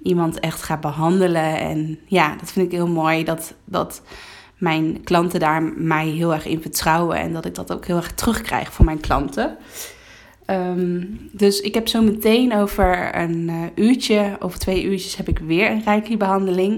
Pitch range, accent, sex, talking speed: 170-205 Hz, Dutch, female, 180 wpm